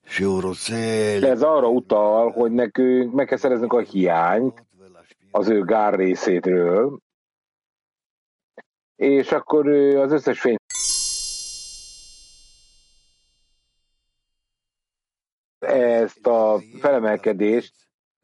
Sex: male